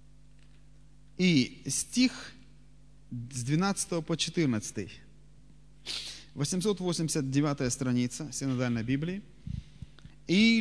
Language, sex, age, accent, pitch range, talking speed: Russian, male, 30-49, native, 145-205 Hz, 60 wpm